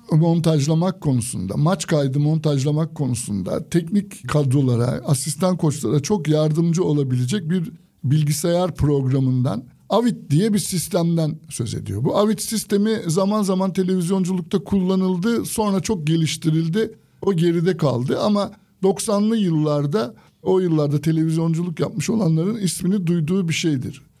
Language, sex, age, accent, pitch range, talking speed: Turkish, male, 60-79, native, 150-190 Hz, 115 wpm